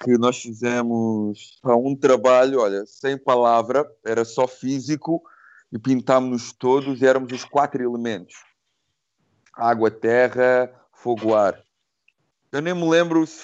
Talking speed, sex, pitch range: 125 wpm, male, 120-145 Hz